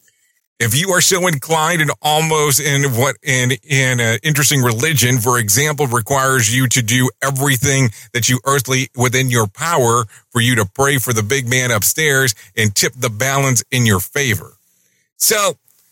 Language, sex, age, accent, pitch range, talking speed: English, male, 40-59, American, 110-150 Hz, 165 wpm